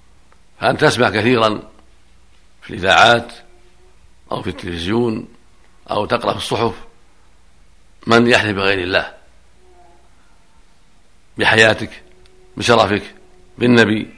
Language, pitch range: Arabic, 80-115 Hz